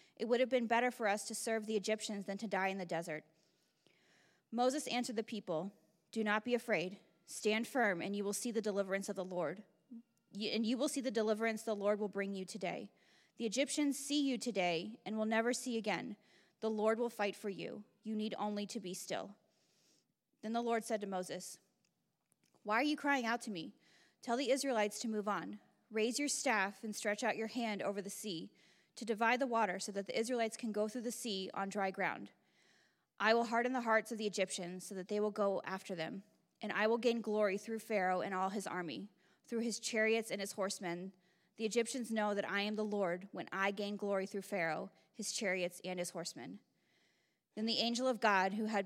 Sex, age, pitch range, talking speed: female, 20-39, 195-230 Hz, 215 wpm